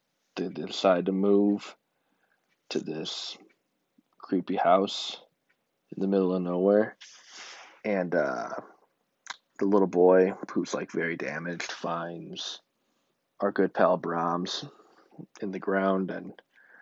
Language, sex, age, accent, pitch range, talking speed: English, male, 20-39, American, 95-135 Hz, 110 wpm